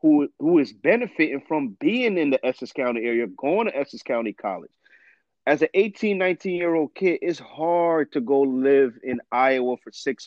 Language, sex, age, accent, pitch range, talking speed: English, male, 30-49, American, 115-170 Hz, 185 wpm